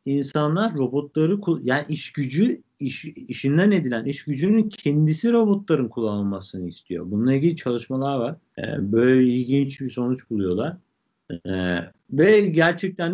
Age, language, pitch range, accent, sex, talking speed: 50-69, Turkish, 110-155 Hz, native, male, 115 wpm